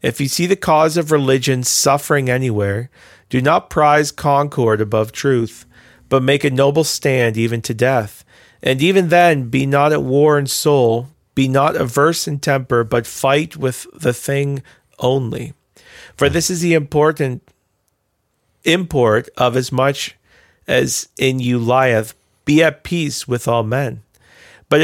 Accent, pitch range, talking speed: American, 120-145 Hz, 150 wpm